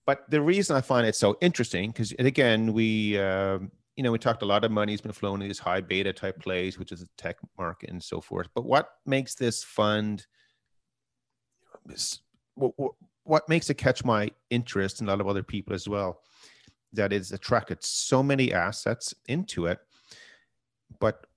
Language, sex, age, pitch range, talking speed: English, male, 30-49, 95-115 Hz, 185 wpm